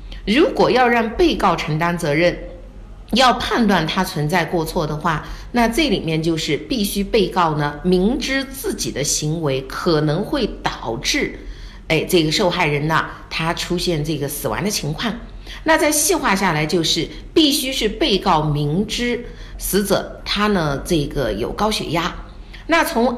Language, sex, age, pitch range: Chinese, female, 50-69, 160-250 Hz